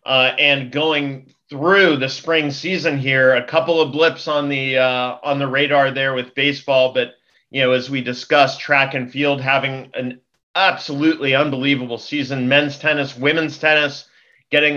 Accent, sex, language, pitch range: American, male, English, 130-150 Hz